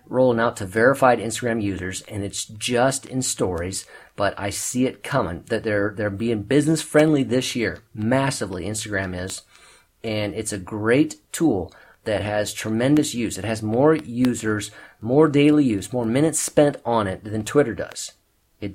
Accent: American